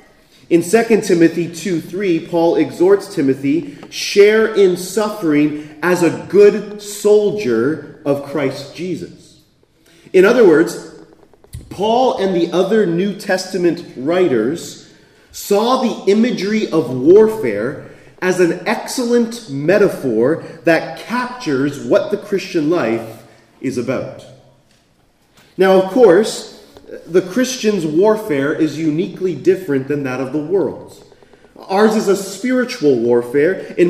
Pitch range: 155-215 Hz